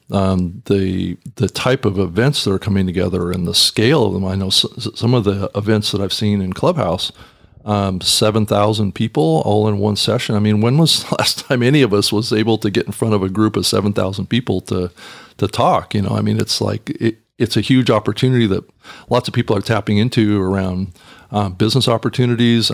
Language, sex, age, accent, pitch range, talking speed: English, male, 40-59, American, 100-115 Hz, 215 wpm